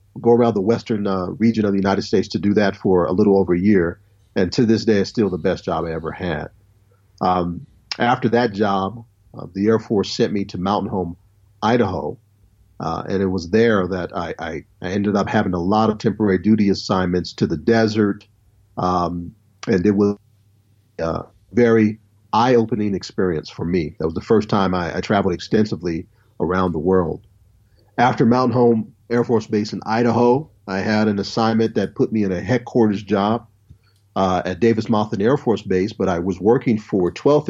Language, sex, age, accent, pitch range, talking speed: English, male, 40-59, American, 95-115 Hz, 190 wpm